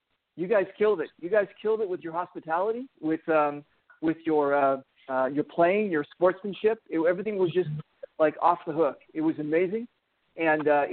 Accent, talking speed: American, 185 wpm